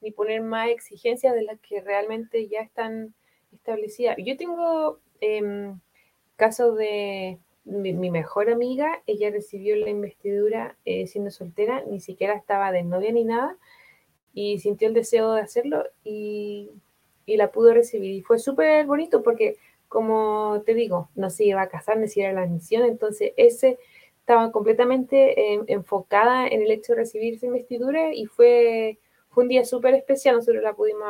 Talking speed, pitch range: 165 wpm, 205-250 Hz